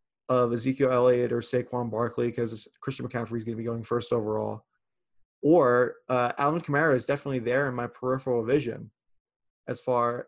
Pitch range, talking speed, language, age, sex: 125-145 Hz, 170 wpm, English, 20-39, male